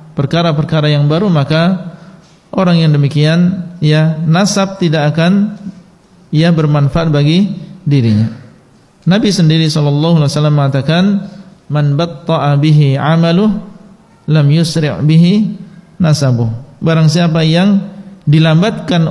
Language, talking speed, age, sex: Indonesian, 95 wpm, 50-69, male